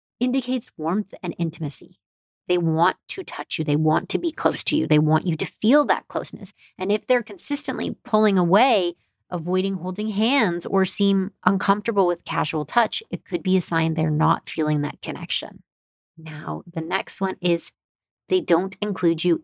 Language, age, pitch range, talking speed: English, 30-49, 160-190 Hz, 175 wpm